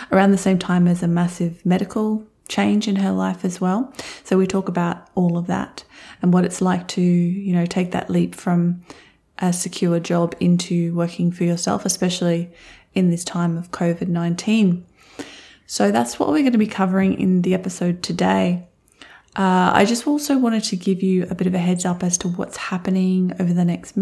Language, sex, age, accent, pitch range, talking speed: English, female, 20-39, Australian, 175-190 Hz, 195 wpm